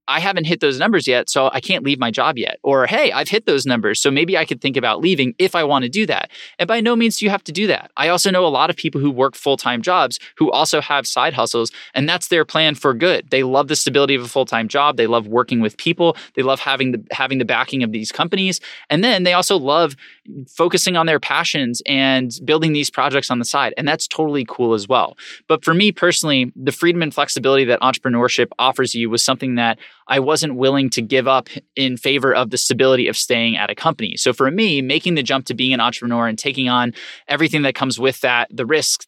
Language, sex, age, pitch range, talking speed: English, male, 20-39, 125-155 Hz, 245 wpm